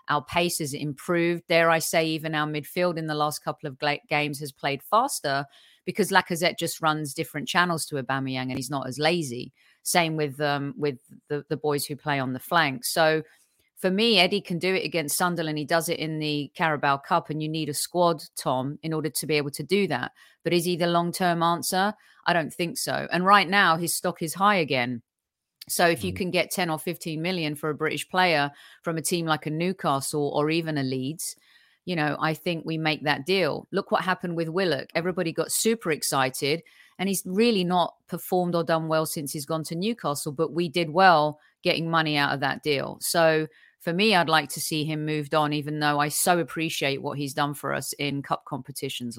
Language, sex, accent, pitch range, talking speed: English, female, British, 150-175 Hz, 215 wpm